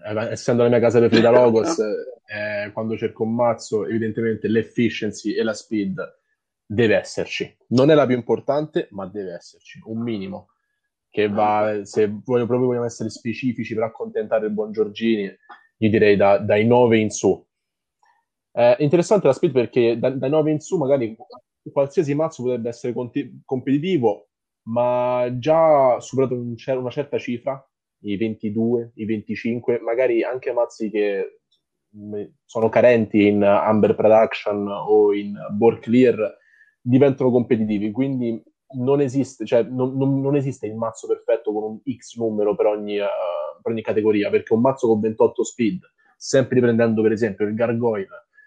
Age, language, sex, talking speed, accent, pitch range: 20-39, Italian, male, 155 wpm, native, 110-135 Hz